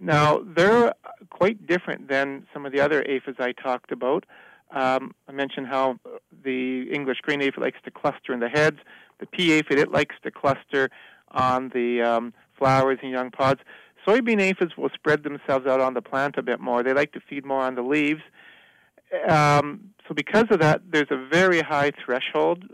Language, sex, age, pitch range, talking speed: English, male, 50-69, 130-160 Hz, 185 wpm